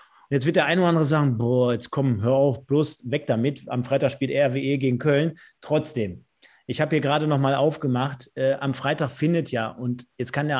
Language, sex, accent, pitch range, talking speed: German, male, German, 125-160 Hz, 215 wpm